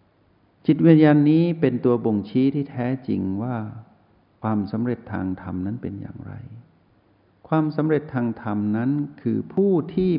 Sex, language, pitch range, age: male, Thai, 105-140 Hz, 60-79